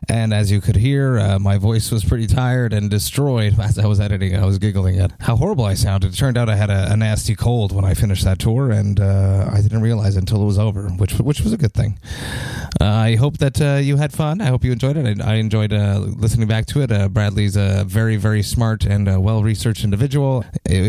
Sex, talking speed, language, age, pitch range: male, 245 wpm, English, 30-49, 105-125 Hz